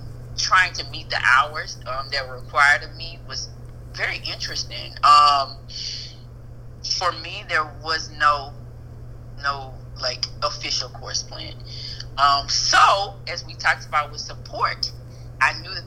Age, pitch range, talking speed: 30-49, 120-135 Hz, 135 wpm